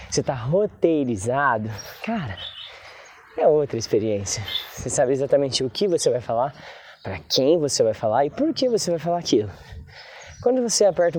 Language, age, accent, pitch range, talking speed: Portuguese, 20-39, Brazilian, 140-205 Hz, 160 wpm